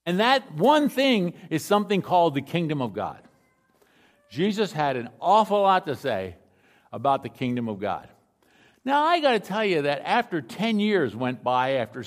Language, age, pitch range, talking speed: English, 50-69, 140-225 Hz, 180 wpm